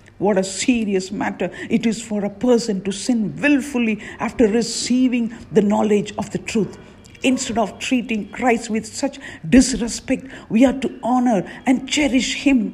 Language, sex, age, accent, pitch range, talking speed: English, female, 50-69, Indian, 220-260 Hz, 155 wpm